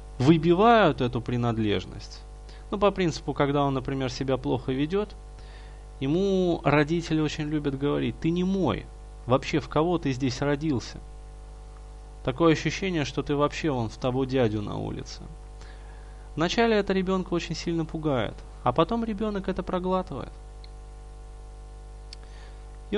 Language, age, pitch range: Russian, 20-39, 125-160 Hz